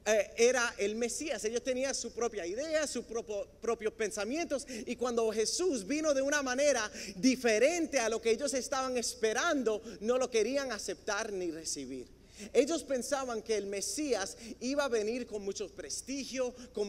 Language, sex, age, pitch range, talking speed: Spanish, male, 40-59, 205-260 Hz, 155 wpm